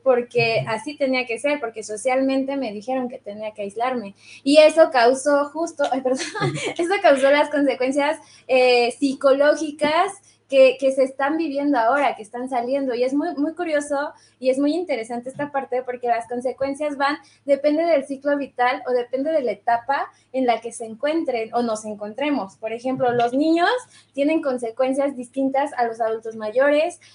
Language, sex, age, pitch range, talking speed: Spanish, female, 20-39, 240-290 Hz, 170 wpm